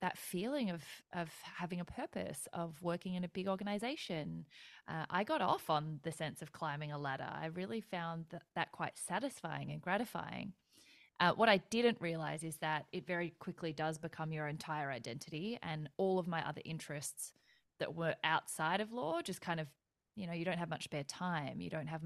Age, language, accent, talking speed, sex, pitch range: 20-39, English, Australian, 200 wpm, female, 155-190 Hz